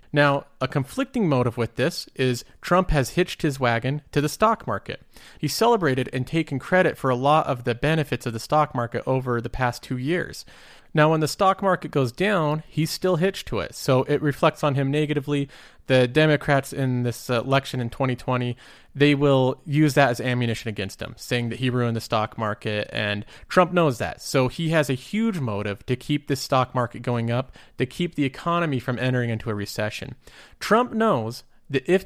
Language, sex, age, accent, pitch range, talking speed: English, male, 30-49, American, 120-155 Hz, 200 wpm